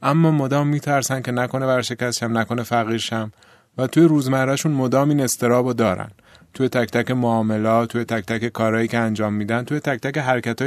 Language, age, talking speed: Persian, 30-49, 175 wpm